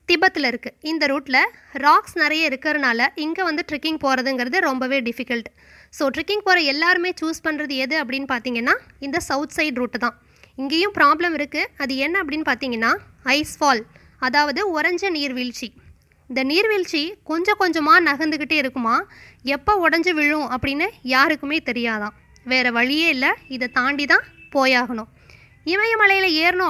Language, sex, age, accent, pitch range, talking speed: Tamil, female, 20-39, native, 265-335 Hz, 135 wpm